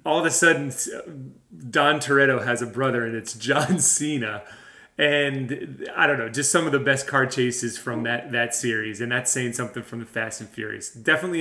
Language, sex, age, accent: English, male, 30-49, American